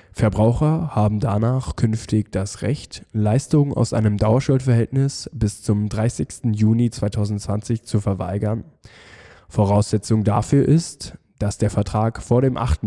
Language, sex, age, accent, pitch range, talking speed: German, male, 10-29, German, 105-125 Hz, 120 wpm